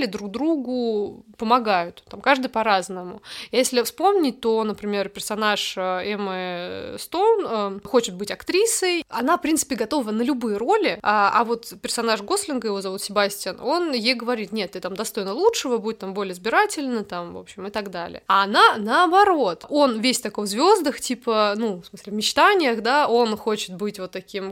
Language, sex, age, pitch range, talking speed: Russian, female, 20-39, 210-275 Hz, 170 wpm